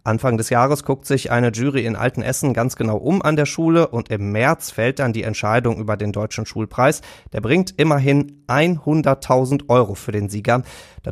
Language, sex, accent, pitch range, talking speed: German, male, German, 115-145 Hz, 190 wpm